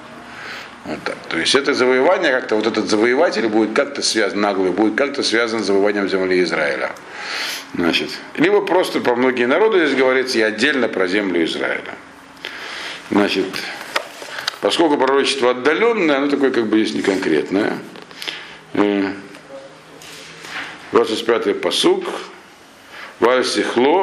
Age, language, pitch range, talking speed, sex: 50-69, Russian, 105-145 Hz, 115 wpm, male